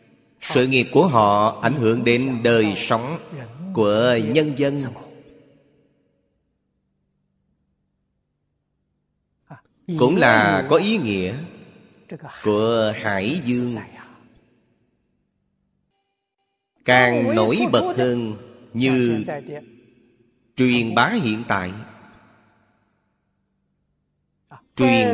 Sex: male